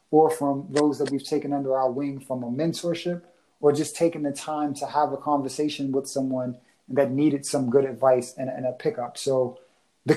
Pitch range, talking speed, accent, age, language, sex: 130-155 Hz, 200 wpm, American, 30-49, English, male